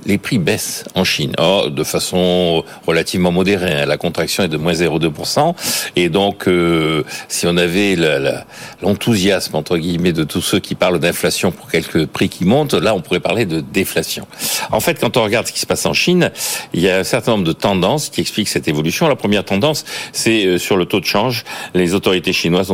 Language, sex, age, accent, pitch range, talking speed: French, male, 60-79, French, 85-100 Hz, 210 wpm